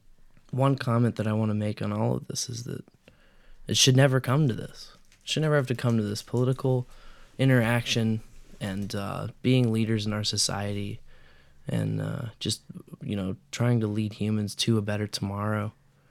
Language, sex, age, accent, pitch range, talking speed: English, male, 20-39, American, 105-125 Hz, 185 wpm